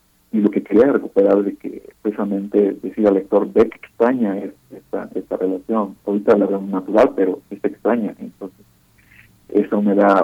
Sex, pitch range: male, 95-105 Hz